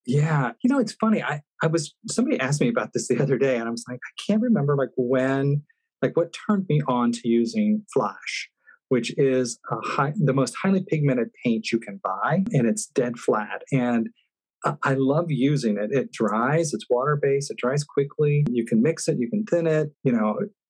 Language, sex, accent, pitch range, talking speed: English, male, American, 120-165 Hz, 210 wpm